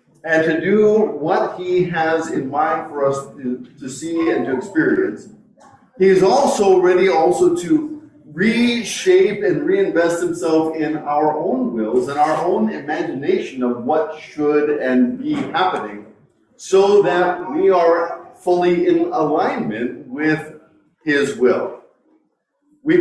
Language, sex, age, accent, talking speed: English, male, 50-69, American, 135 wpm